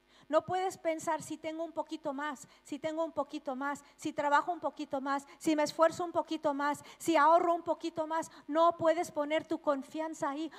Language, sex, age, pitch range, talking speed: Spanish, female, 50-69, 255-315 Hz, 200 wpm